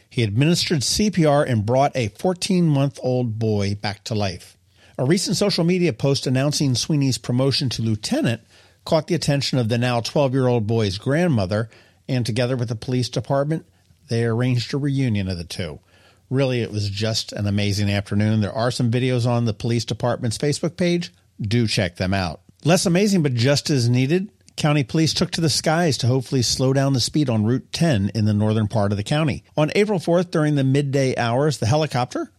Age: 50-69